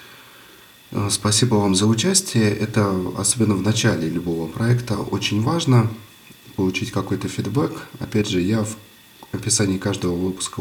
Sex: male